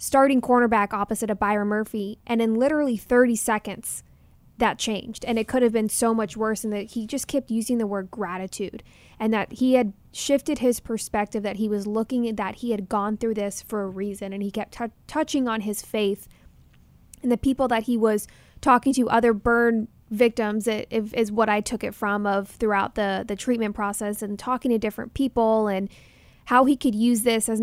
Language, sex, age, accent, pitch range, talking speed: English, female, 10-29, American, 210-240 Hz, 210 wpm